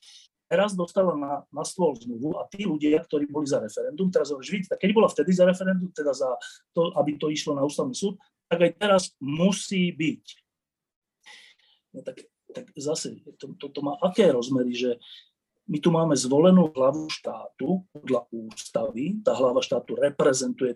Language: Slovak